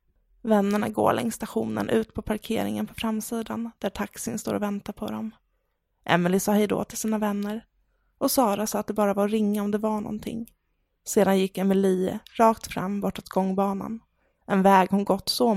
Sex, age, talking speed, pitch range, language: female, 20-39, 175 wpm, 200-230 Hz, English